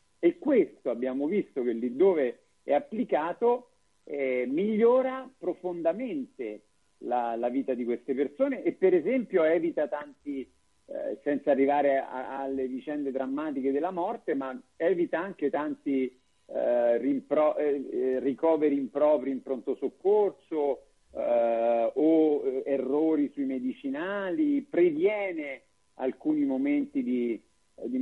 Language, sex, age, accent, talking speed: Italian, male, 50-69, native, 110 wpm